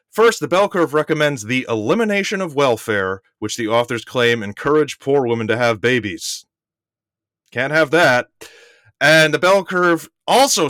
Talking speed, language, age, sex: 150 wpm, English, 30-49, male